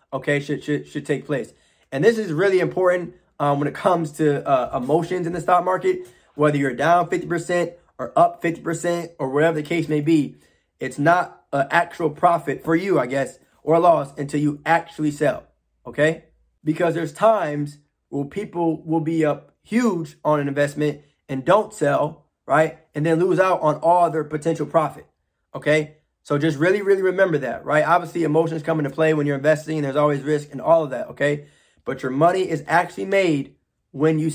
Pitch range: 145-170 Hz